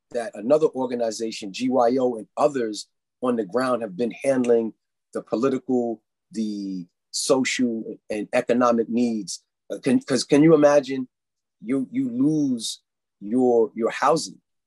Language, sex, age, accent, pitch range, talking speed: Russian, male, 30-49, American, 115-135 Hz, 125 wpm